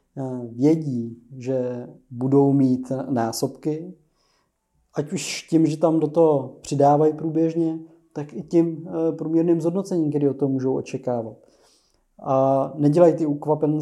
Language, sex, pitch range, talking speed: Czech, male, 135-155 Hz, 120 wpm